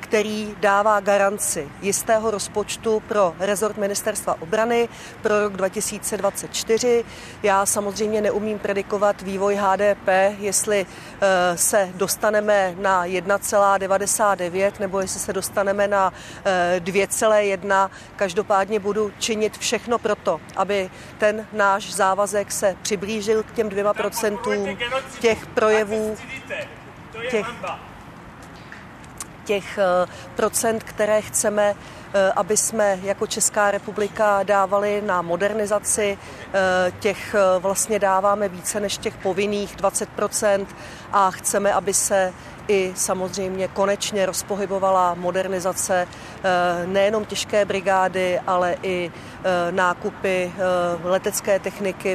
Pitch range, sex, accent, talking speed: 185-210 Hz, female, native, 95 wpm